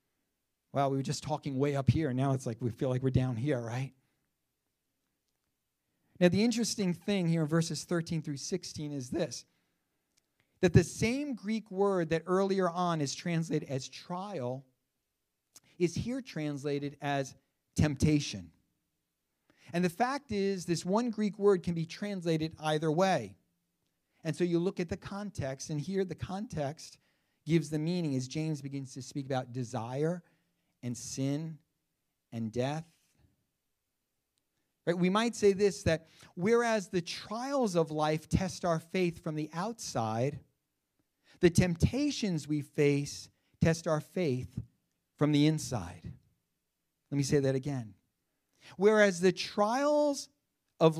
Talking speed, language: 140 wpm, English